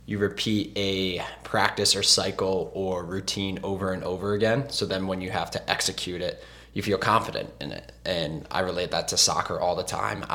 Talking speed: 195 wpm